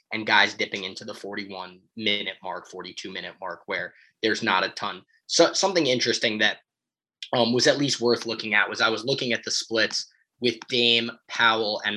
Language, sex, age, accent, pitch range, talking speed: English, male, 20-39, American, 105-125 Hz, 175 wpm